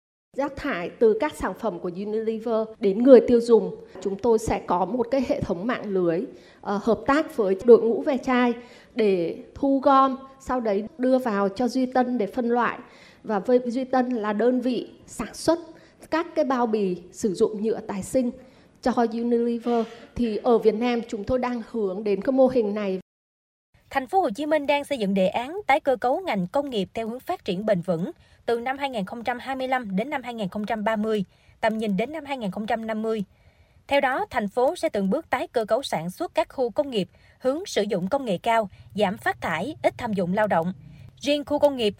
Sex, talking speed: female, 205 wpm